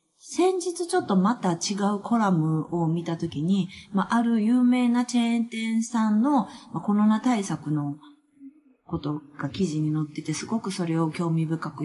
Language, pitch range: Japanese, 170-275 Hz